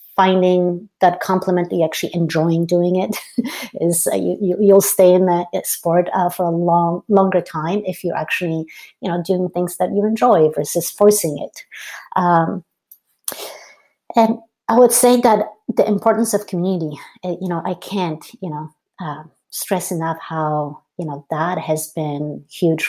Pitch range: 165-190 Hz